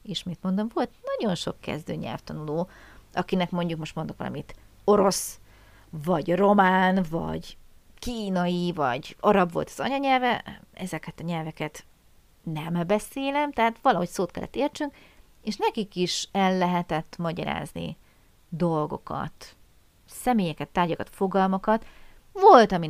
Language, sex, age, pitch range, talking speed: Hungarian, female, 30-49, 160-210 Hz, 115 wpm